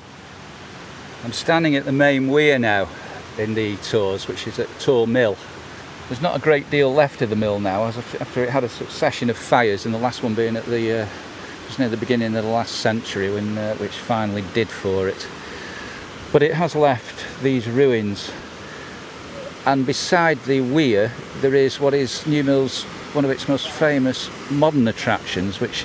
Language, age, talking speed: English, 50-69, 185 wpm